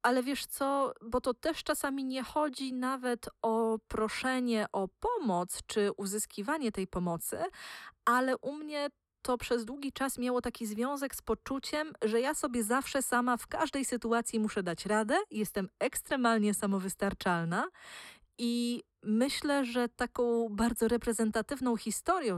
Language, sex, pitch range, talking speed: Polish, female, 205-260 Hz, 135 wpm